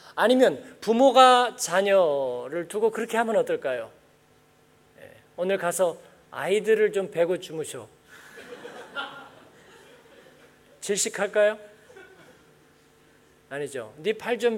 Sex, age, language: male, 40-59, Korean